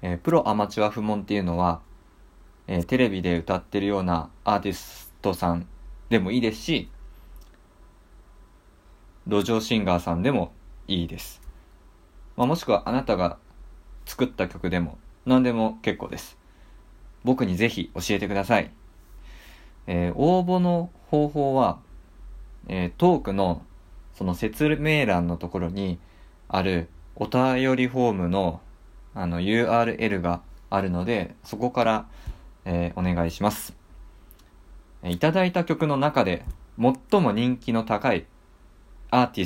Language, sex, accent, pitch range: Japanese, male, native, 85-115 Hz